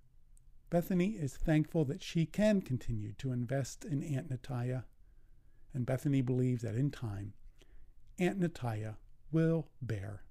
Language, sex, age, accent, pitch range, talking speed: English, male, 50-69, American, 120-155 Hz, 130 wpm